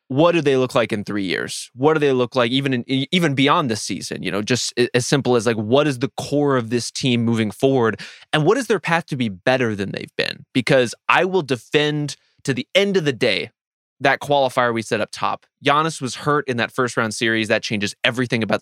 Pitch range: 115-145 Hz